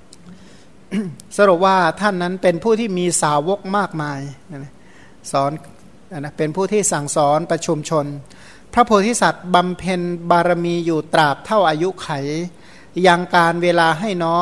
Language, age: Thai, 60-79